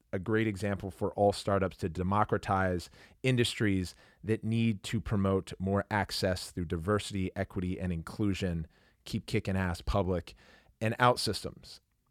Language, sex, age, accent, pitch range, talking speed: English, male, 30-49, American, 95-115 Hz, 135 wpm